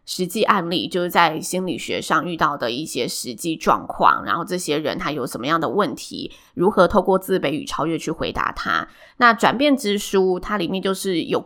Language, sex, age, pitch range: Chinese, female, 20-39, 170-225 Hz